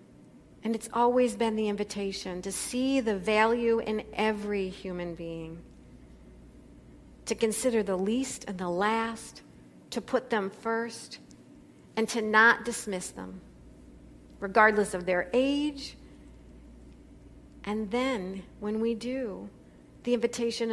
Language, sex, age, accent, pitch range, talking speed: English, female, 50-69, American, 180-245 Hz, 120 wpm